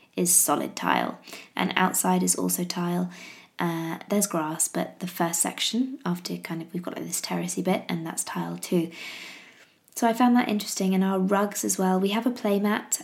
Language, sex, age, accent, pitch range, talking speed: English, female, 20-39, British, 175-190 Hz, 195 wpm